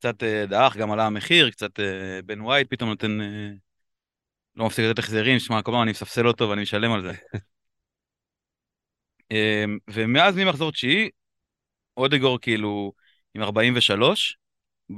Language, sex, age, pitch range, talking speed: Hebrew, male, 30-49, 105-135 Hz, 130 wpm